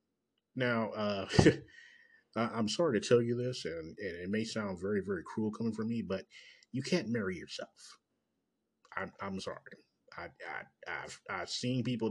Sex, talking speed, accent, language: male, 155 wpm, American, English